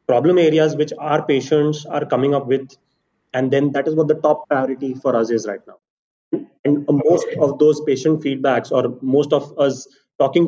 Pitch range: 125-150 Hz